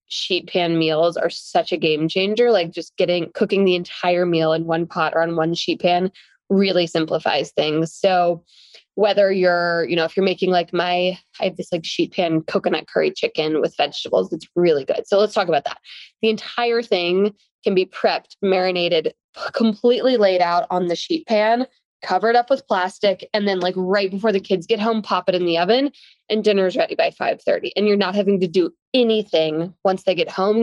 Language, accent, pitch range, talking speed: English, American, 175-215 Hz, 210 wpm